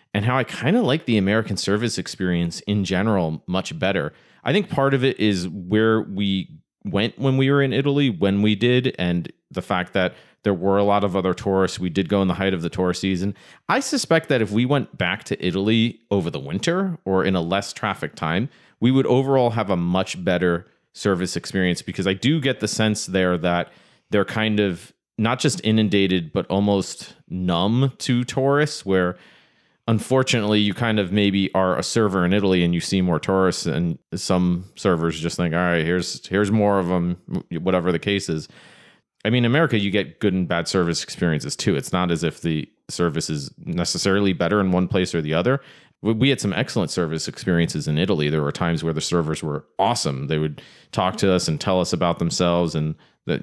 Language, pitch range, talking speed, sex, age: English, 85-110 Hz, 210 wpm, male, 30-49